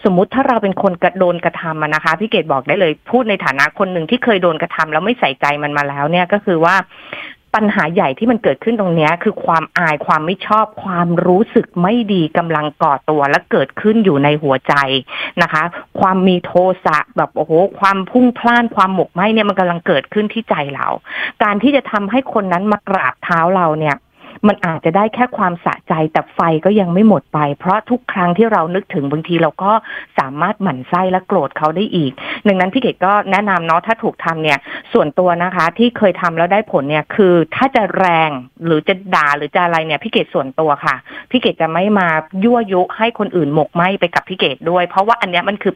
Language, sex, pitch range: Thai, female, 160-210 Hz